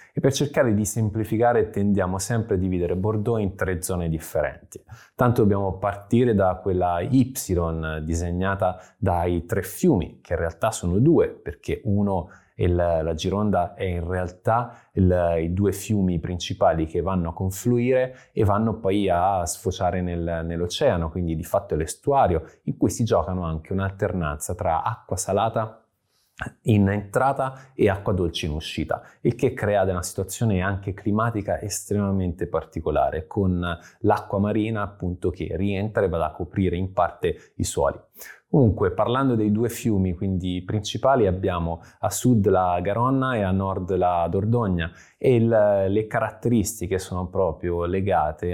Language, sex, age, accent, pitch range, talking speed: Italian, male, 20-39, native, 90-110 Hz, 150 wpm